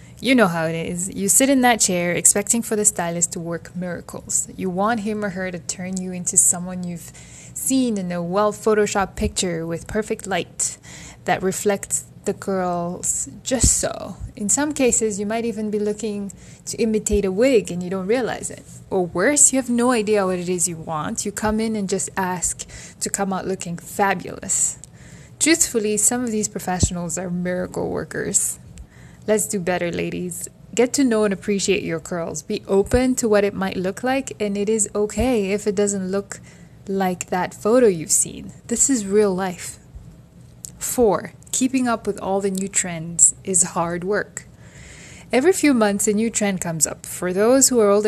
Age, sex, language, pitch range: 20-39, female, English, 180-215 Hz